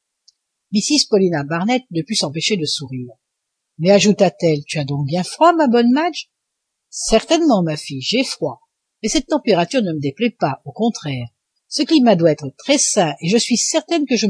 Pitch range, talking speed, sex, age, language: 155-240 Hz, 185 wpm, female, 60-79, French